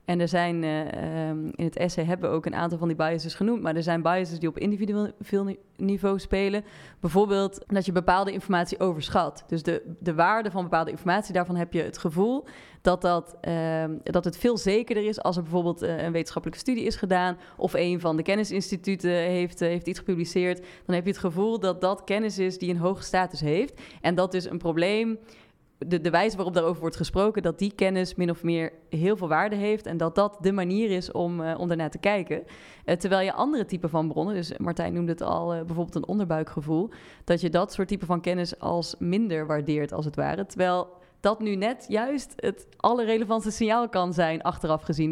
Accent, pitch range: Dutch, 170-195 Hz